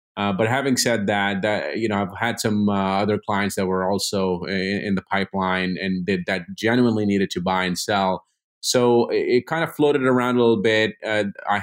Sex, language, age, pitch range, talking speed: male, English, 30-49, 100-115 Hz, 210 wpm